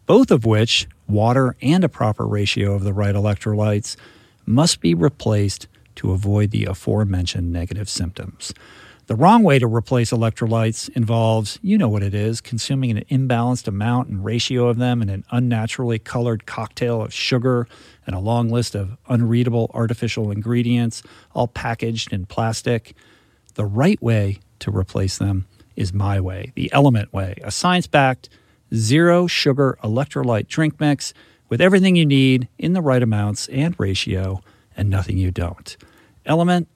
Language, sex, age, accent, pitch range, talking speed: English, male, 50-69, American, 105-135 Hz, 155 wpm